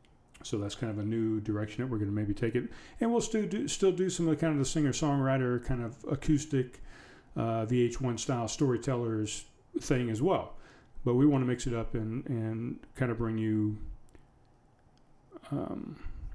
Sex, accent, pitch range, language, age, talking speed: male, American, 115-140 Hz, English, 40-59, 185 wpm